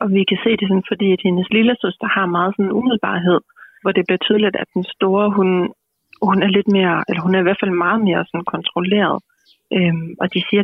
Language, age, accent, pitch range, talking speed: Danish, 30-49, native, 180-205 Hz, 230 wpm